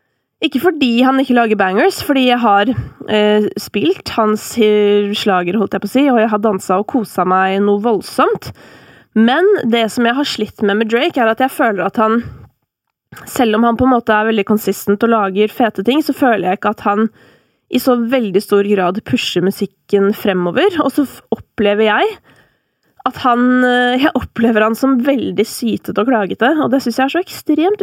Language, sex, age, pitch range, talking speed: English, female, 20-39, 205-260 Hz, 195 wpm